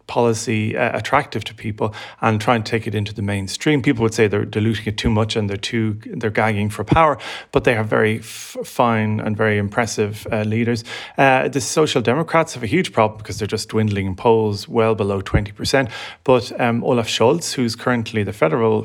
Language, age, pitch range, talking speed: English, 30-49, 105-120 Hz, 205 wpm